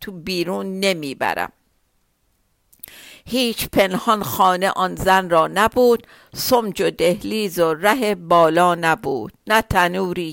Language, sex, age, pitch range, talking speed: Persian, female, 50-69, 180-225 Hz, 115 wpm